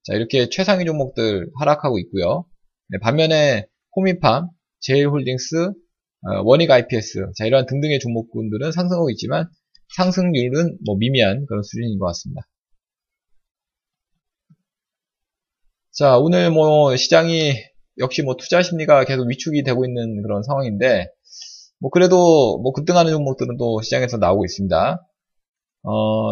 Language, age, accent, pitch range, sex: Korean, 20-39, native, 110-170 Hz, male